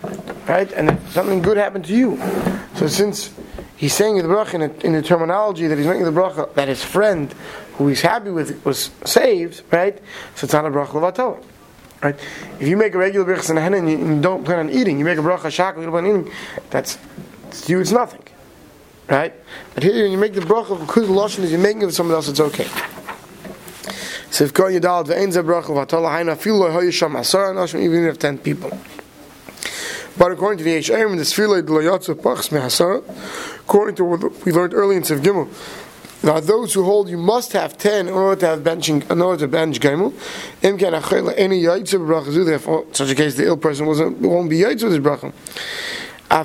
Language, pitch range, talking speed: English, 160-200 Hz, 180 wpm